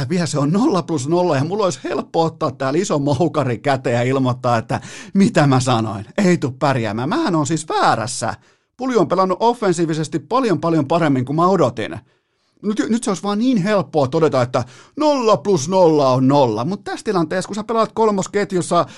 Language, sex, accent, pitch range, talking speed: Finnish, male, native, 130-185 Hz, 185 wpm